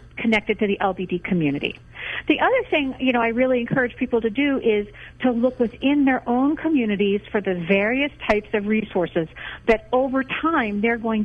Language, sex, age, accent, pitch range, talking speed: English, female, 50-69, American, 200-255 Hz, 180 wpm